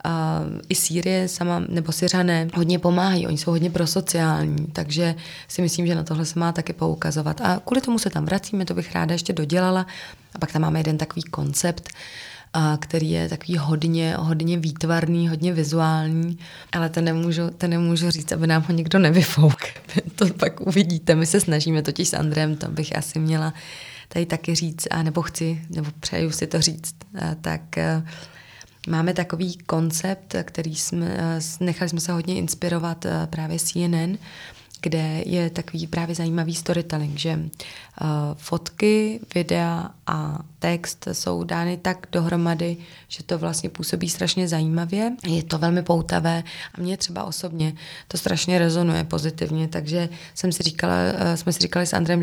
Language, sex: Czech, female